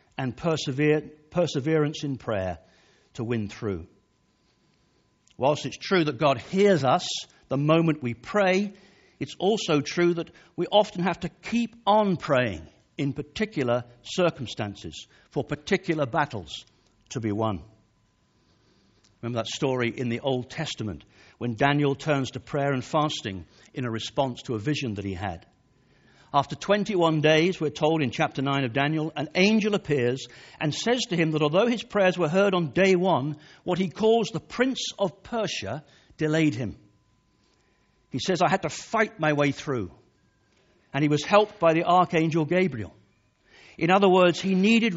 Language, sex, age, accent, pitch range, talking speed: English, male, 60-79, British, 120-175 Hz, 155 wpm